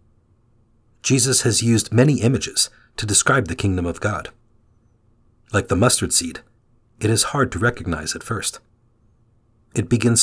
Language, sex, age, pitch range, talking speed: English, male, 40-59, 105-120 Hz, 140 wpm